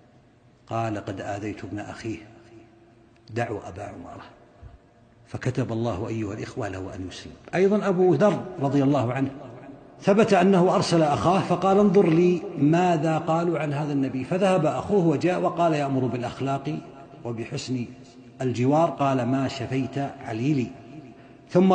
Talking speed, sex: 130 wpm, male